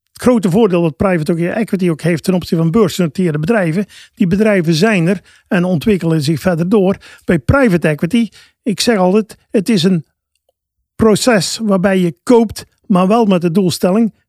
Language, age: Dutch, 50-69